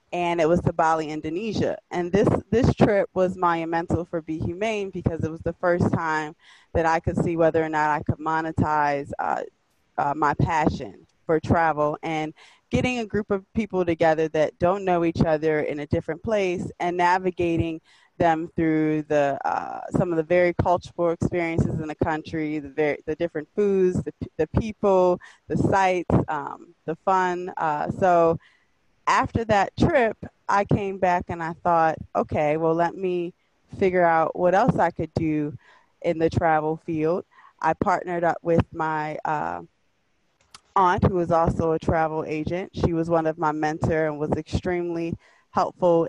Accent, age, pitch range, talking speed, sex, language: American, 20-39, 155-180 Hz, 170 wpm, female, English